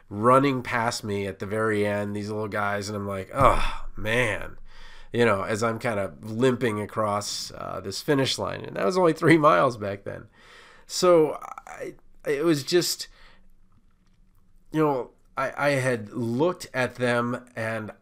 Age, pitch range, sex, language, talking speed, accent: 30-49, 100-130 Hz, male, English, 165 wpm, American